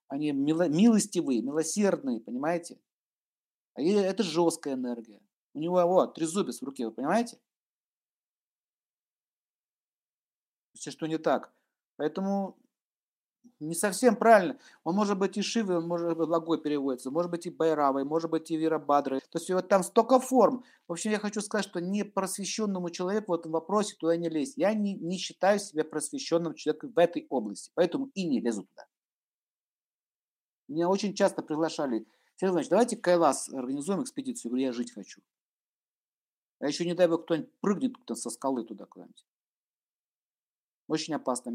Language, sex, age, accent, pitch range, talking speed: Russian, male, 50-69, native, 145-195 Hz, 150 wpm